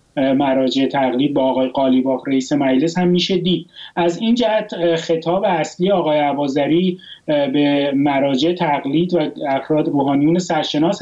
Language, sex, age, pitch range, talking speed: Persian, male, 30-49, 145-180 Hz, 130 wpm